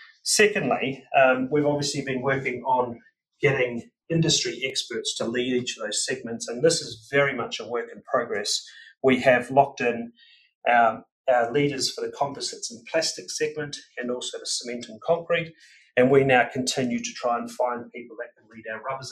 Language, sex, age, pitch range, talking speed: English, male, 30-49, 120-170 Hz, 180 wpm